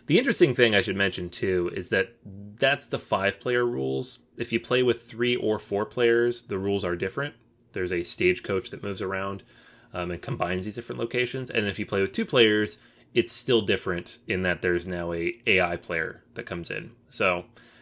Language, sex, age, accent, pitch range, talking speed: English, male, 30-49, American, 95-120 Hz, 195 wpm